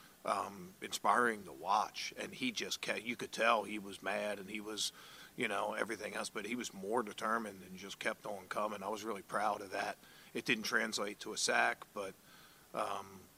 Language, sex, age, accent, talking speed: English, male, 40-59, American, 205 wpm